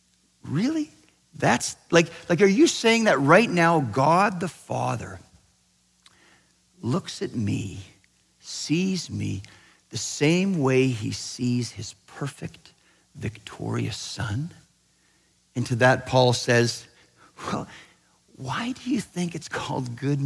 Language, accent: English, American